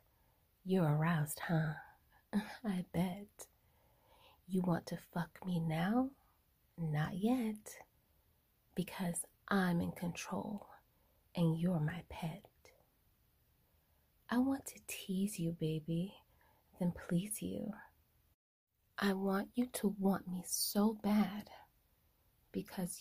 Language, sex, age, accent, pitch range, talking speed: English, female, 30-49, American, 175-205 Hz, 100 wpm